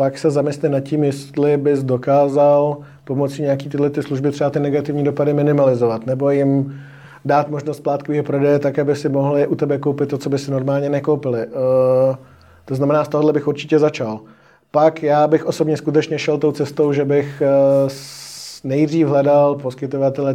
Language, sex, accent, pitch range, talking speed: Czech, male, native, 135-145 Hz, 170 wpm